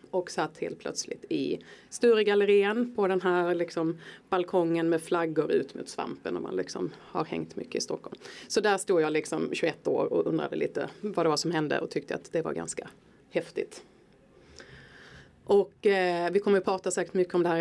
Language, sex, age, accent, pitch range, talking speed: Swedish, female, 30-49, native, 165-195 Hz, 200 wpm